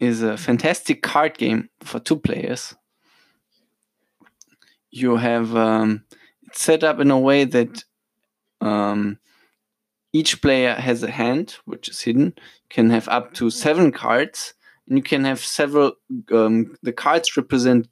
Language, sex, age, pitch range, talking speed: English, male, 20-39, 115-145 Hz, 135 wpm